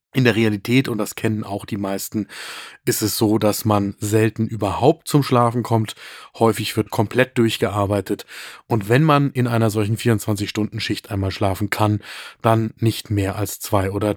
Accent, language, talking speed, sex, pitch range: German, German, 165 wpm, male, 110-130 Hz